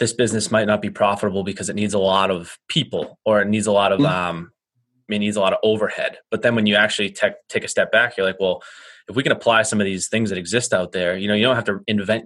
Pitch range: 95-105 Hz